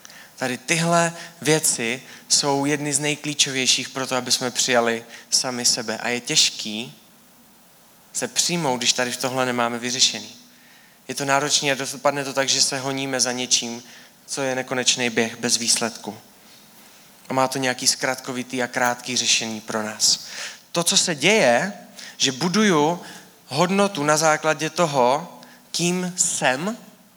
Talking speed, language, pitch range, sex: 145 wpm, Czech, 125-170 Hz, male